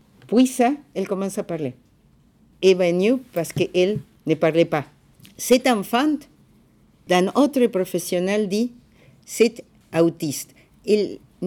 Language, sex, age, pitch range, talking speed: French, female, 50-69, 170-235 Hz, 115 wpm